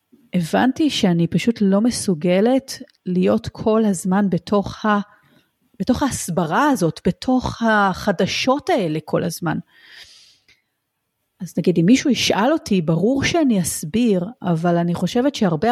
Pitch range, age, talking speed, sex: 180-240 Hz, 30-49, 120 wpm, female